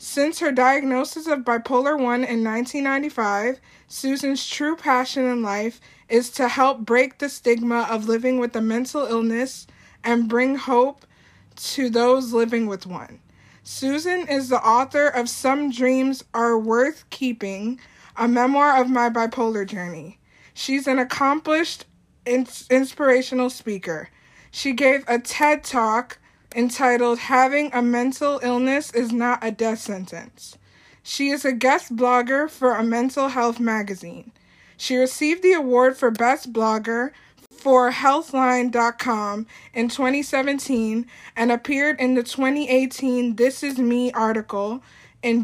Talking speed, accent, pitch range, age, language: 130 wpm, American, 230-270 Hz, 20-39, English